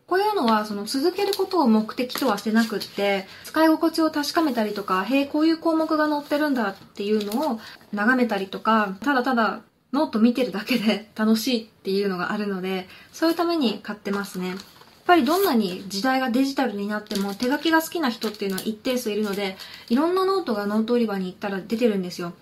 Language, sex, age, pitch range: Japanese, female, 20-39, 205-285 Hz